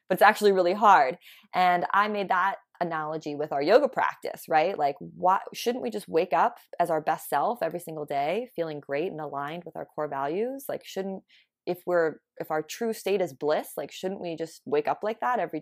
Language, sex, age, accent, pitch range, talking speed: English, female, 20-39, American, 165-235 Hz, 210 wpm